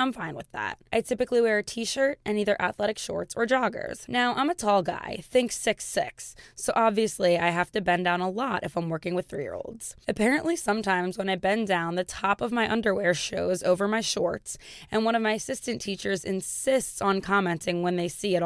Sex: female